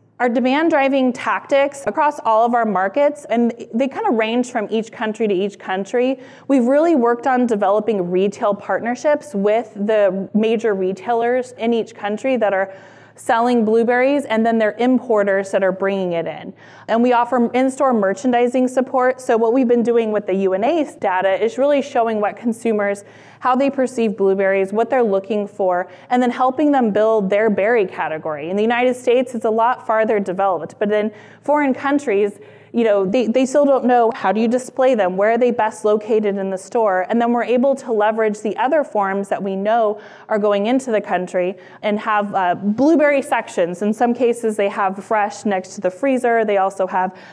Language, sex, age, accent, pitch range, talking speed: English, female, 20-39, American, 195-245 Hz, 190 wpm